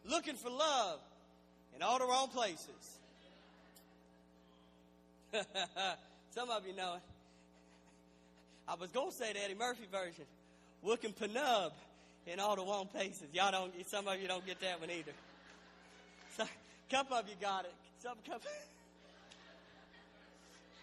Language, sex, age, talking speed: English, male, 40-59, 145 wpm